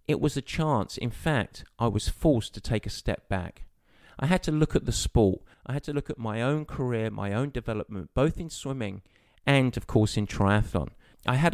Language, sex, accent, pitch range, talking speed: English, male, British, 100-135 Hz, 220 wpm